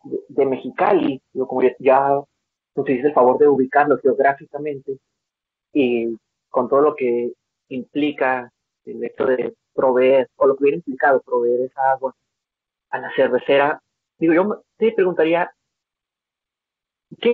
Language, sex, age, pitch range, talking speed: Spanish, male, 40-59, 130-190 Hz, 130 wpm